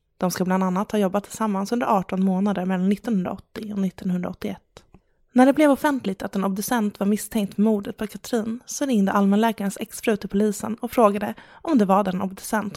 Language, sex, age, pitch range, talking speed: English, female, 20-39, 195-225 Hz, 190 wpm